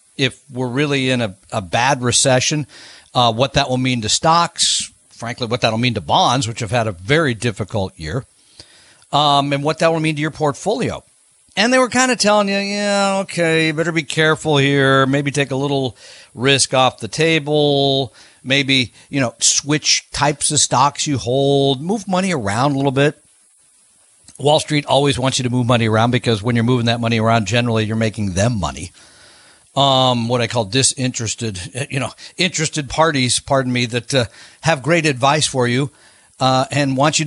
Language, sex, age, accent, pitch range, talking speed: English, male, 50-69, American, 125-155 Hz, 190 wpm